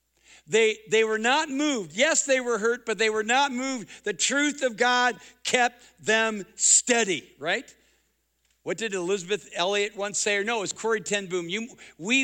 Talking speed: 180 wpm